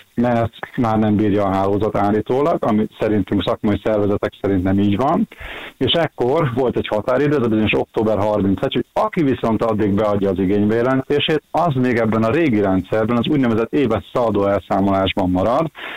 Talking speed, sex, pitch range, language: 165 wpm, male, 100-120 Hz, Hungarian